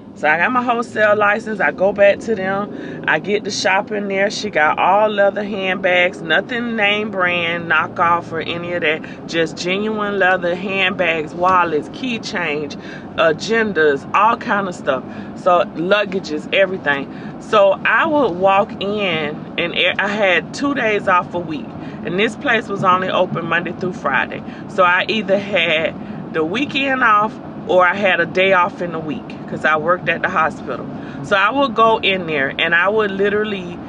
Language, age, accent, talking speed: English, 30-49, American, 175 wpm